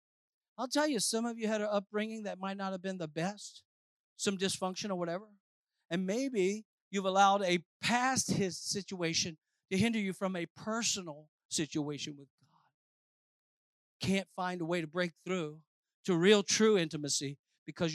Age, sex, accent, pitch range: 50-69, male, American, 160-210 Hz